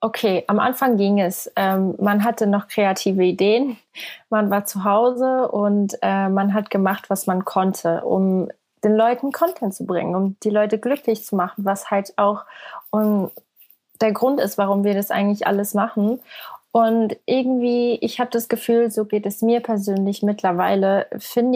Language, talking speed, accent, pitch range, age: German, 165 wpm, German, 200-230 Hz, 20-39